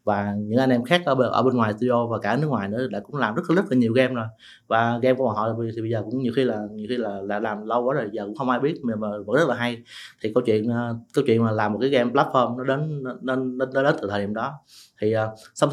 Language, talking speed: Vietnamese, 300 wpm